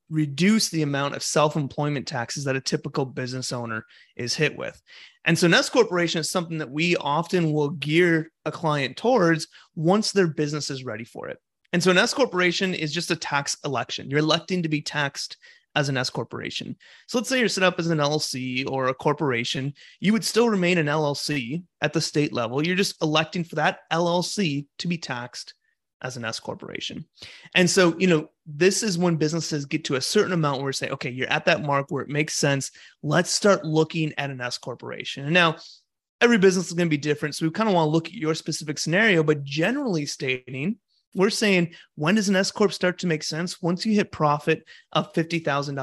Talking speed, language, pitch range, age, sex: 210 wpm, English, 145-180 Hz, 30-49, male